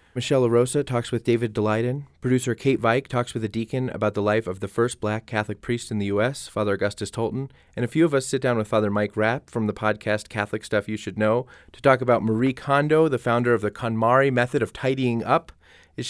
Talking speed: 230 wpm